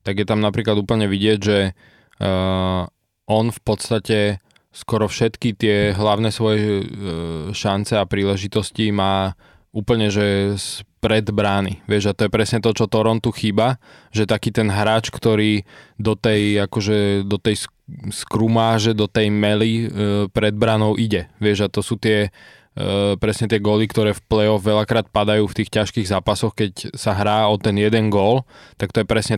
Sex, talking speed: male, 165 wpm